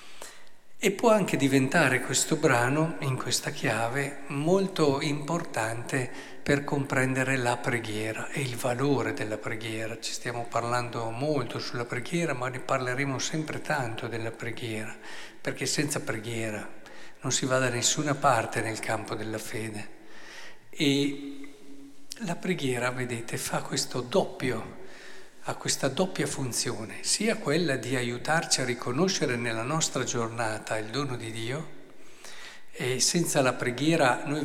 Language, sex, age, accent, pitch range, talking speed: Italian, male, 50-69, native, 120-150 Hz, 130 wpm